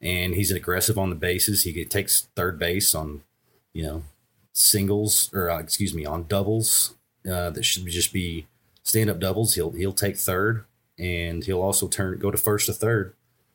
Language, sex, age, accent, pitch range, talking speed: English, male, 30-49, American, 90-110 Hz, 175 wpm